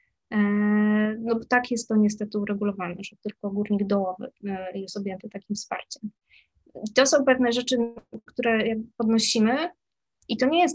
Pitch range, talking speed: 200-230 Hz, 145 wpm